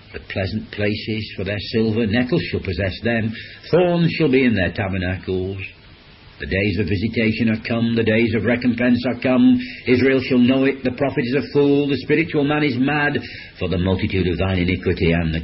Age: 60-79